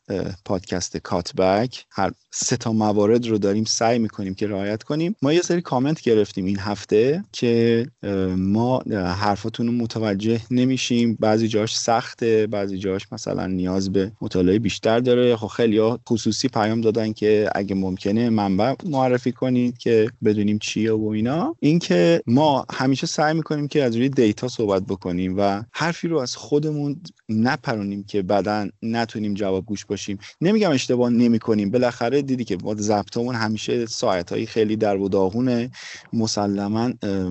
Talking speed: 150 wpm